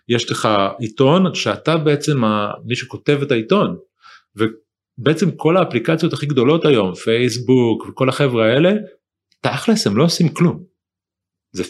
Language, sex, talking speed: Hebrew, male, 130 wpm